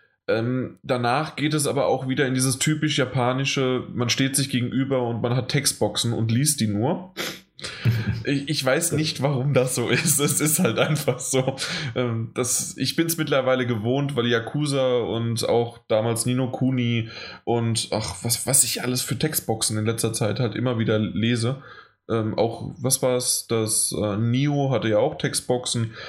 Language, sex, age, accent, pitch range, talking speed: German, male, 20-39, German, 115-135 Hz, 175 wpm